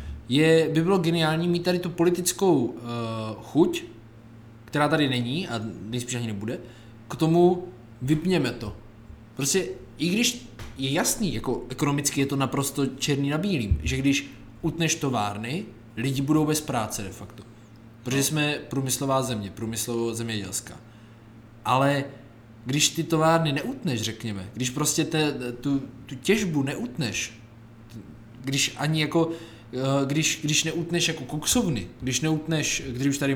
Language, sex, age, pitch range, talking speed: Czech, male, 20-39, 115-155 Hz, 135 wpm